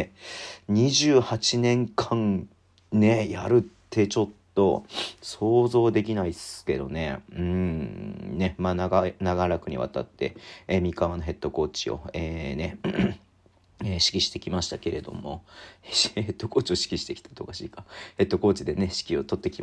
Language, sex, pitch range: Japanese, male, 90-115 Hz